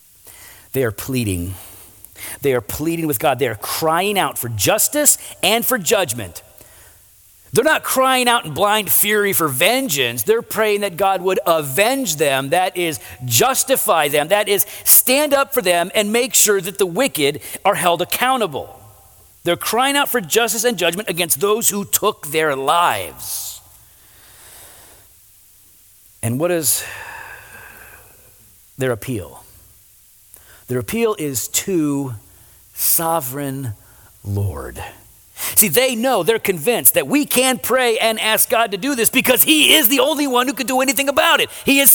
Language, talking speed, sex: English, 150 wpm, male